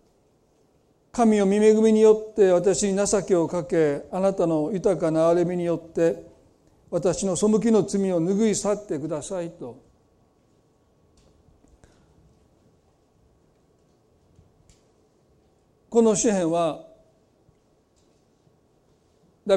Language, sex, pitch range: Japanese, male, 160-205 Hz